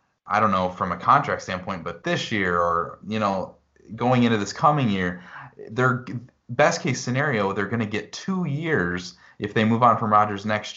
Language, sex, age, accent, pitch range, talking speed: English, male, 30-49, American, 95-125 Hz, 195 wpm